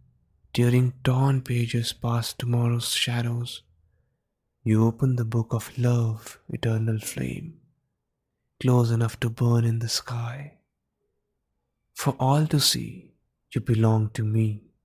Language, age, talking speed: English, 20-39, 115 wpm